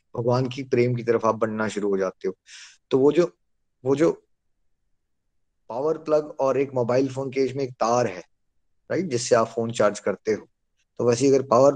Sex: male